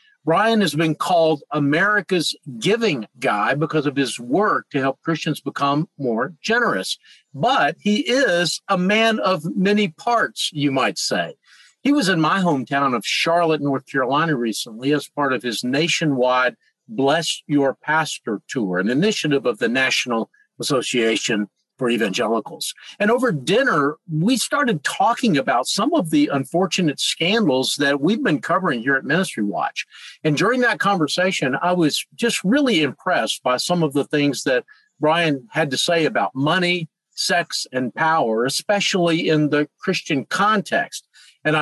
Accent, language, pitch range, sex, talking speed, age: American, English, 145-190 Hz, male, 150 wpm, 50-69